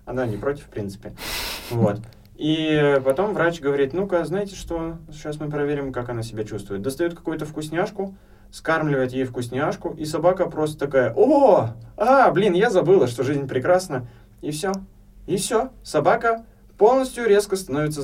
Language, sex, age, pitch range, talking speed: Russian, male, 20-39, 105-145 Hz, 155 wpm